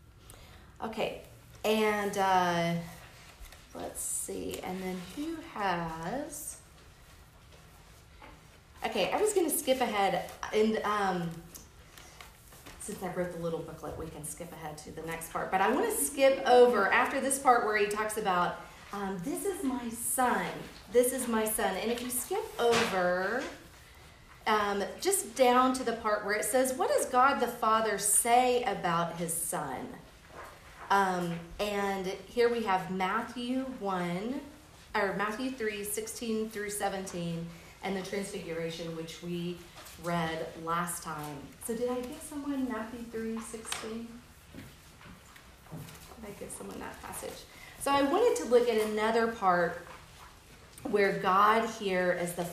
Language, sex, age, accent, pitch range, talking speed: English, female, 40-59, American, 175-235 Hz, 140 wpm